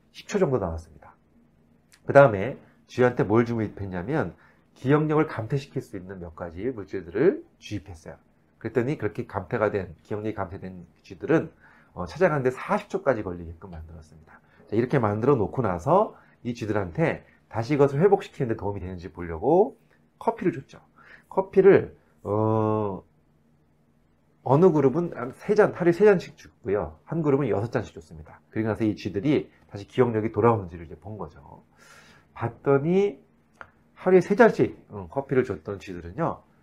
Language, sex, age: Korean, male, 40-59